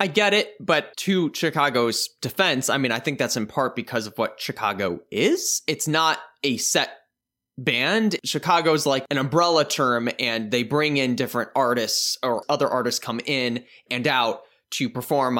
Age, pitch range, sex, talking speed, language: 10-29, 115-150 Hz, male, 170 wpm, English